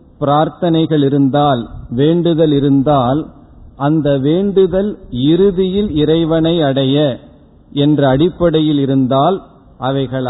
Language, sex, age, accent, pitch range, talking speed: Tamil, male, 50-69, native, 130-165 Hz, 75 wpm